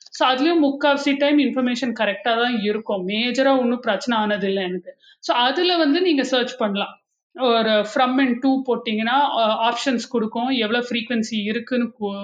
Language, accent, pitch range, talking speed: Tamil, native, 220-270 Hz, 150 wpm